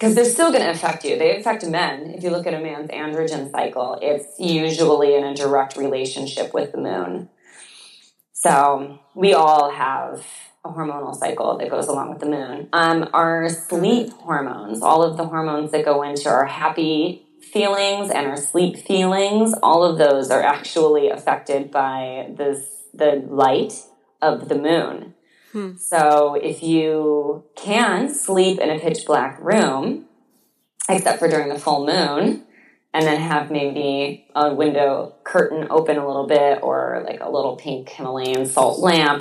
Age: 20-39